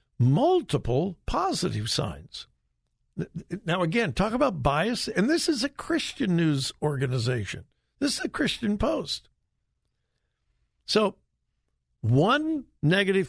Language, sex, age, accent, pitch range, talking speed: English, male, 60-79, American, 115-190 Hz, 105 wpm